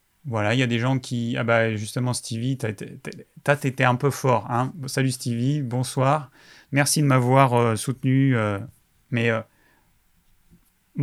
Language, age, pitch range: French, 30-49, 110-130 Hz